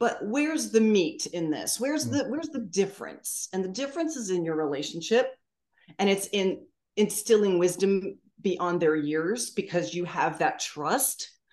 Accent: American